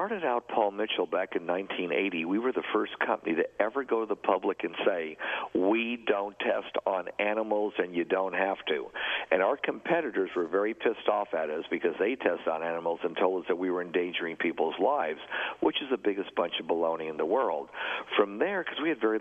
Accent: American